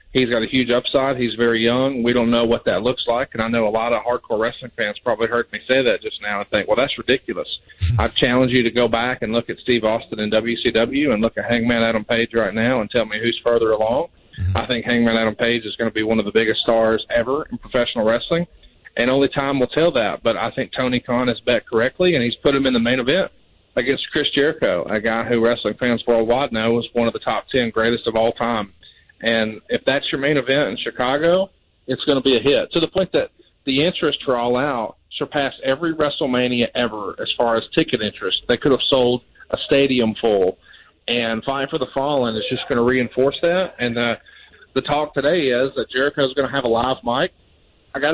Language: English